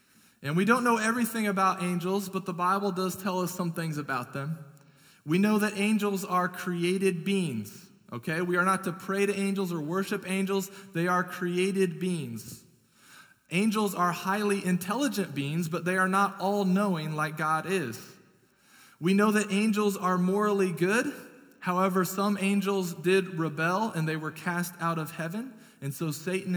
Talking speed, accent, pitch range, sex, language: 165 wpm, American, 170-210 Hz, male, English